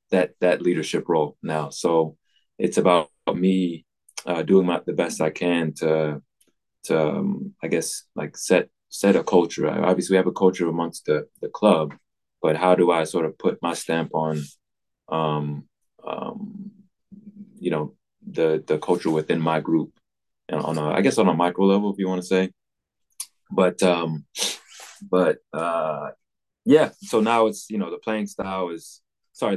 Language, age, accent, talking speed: English, 20-39, American, 170 wpm